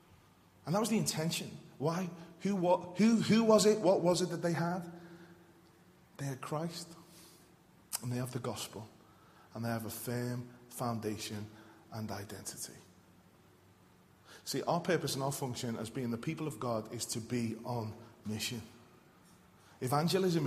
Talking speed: 150 wpm